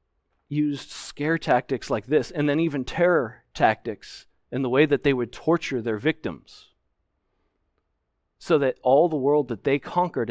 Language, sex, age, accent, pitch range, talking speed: English, male, 40-59, American, 90-125 Hz, 155 wpm